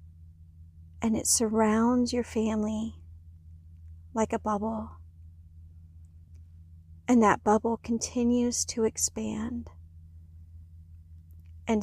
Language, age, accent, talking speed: English, 40-59, American, 75 wpm